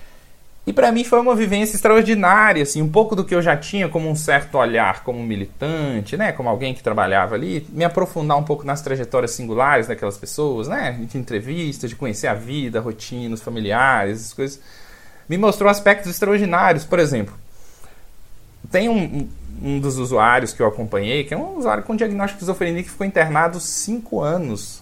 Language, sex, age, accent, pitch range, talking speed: Portuguese, male, 20-39, Brazilian, 125-200 Hz, 180 wpm